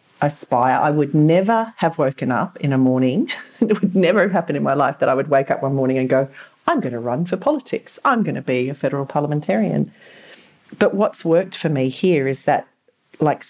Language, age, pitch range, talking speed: English, 40-59, 125-155 Hz, 220 wpm